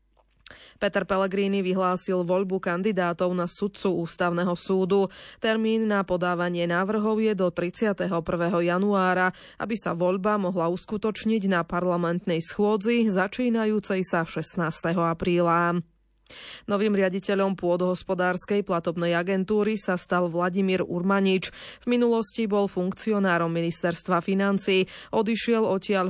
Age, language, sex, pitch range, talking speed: 20-39, Slovak, female, 175-205 Hz, 105 wpm